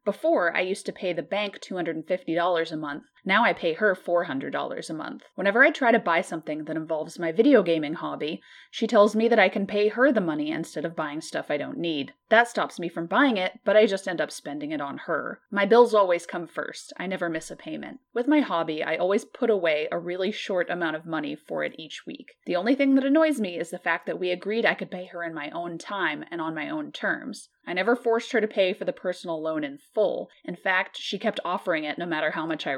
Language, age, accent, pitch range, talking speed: English, 30-49, American, 170-230 Hz, 250 wpm